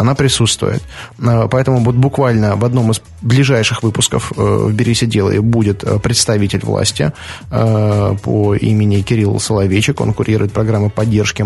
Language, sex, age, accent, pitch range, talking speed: Russian, male, 20-39, native, 105-125 Hz, 115 wpm